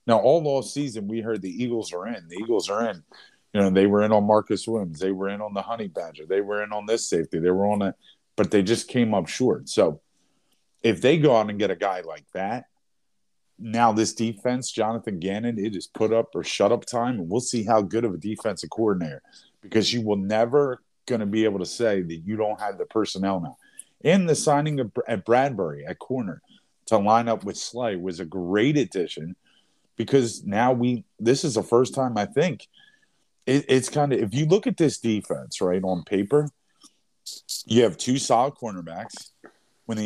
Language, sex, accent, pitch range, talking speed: English, male, American, 100-120 Hz, 215 wpm